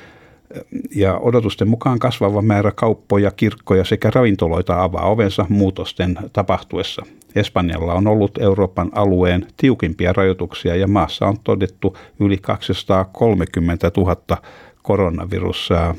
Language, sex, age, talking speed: Finnish, male, 60-79, 100 wpm